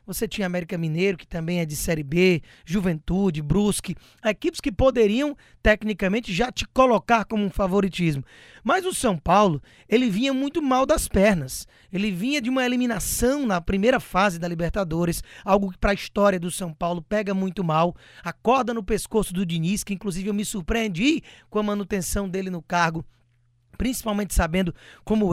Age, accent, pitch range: 20-39, Brazilian, 180-230 Hz